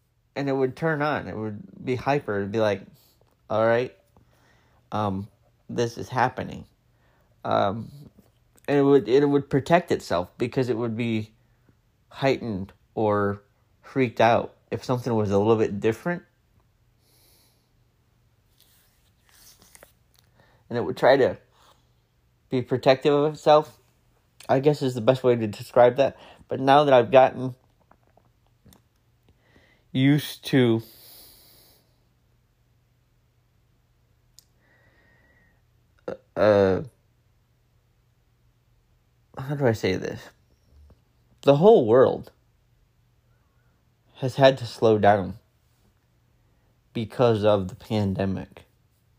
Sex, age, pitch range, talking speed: male, 30-49, 110-125 Hz, 100 wpm